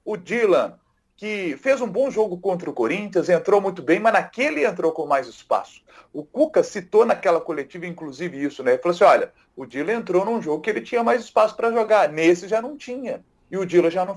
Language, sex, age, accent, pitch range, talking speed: Portuguese, male, 40-59, Brazilian, 170-230 Hz, 220 wpm